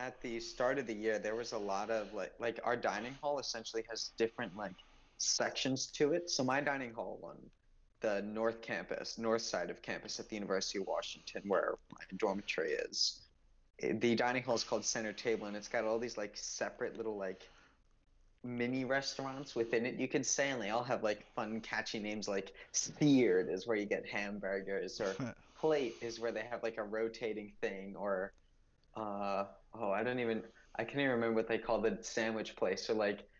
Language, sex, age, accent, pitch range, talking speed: English, male, 20-39, American, 105-125 Hz, 200 wpm